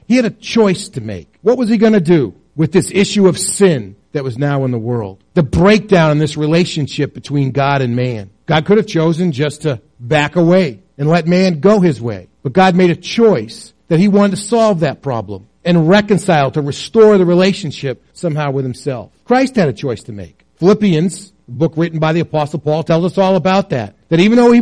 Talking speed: 220 wpm